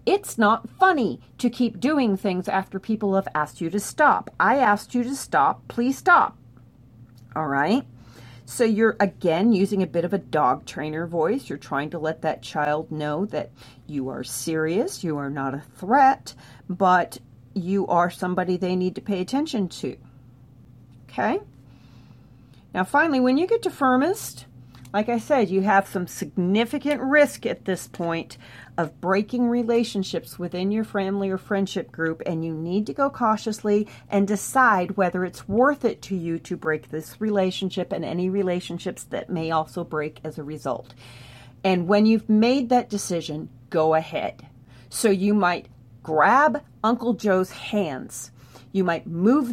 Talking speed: 160 wpm